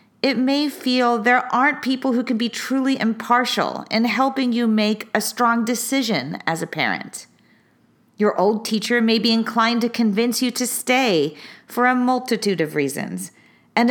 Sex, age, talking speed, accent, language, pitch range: female, 40-59, 165 wpm, American, English, 190-250 Hz